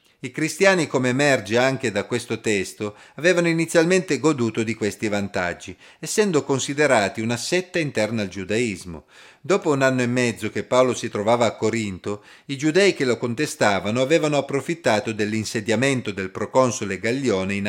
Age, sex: 40-59, male